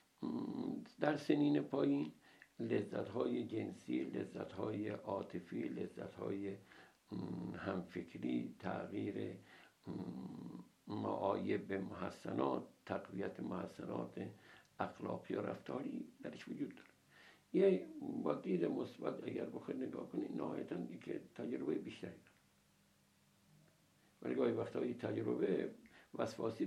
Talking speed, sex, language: 85 wpm, male, Persian